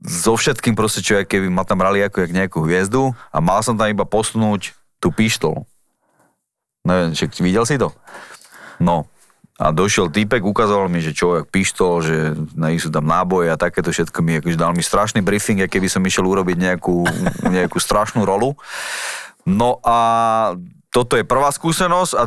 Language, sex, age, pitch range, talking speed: Slovak, male, 30-49, 85-110 Hz, 170 wpm